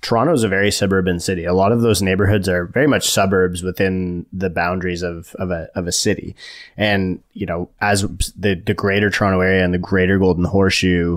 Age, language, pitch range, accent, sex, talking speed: 20-39, English, 90-100 Hz, American, male, 205 wpm